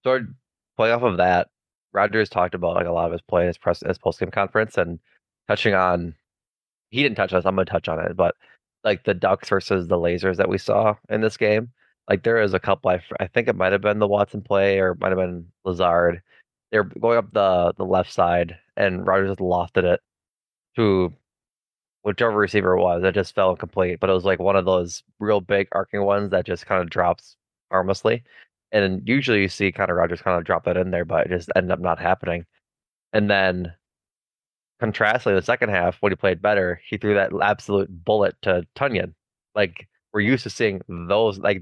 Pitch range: 90-100 Hz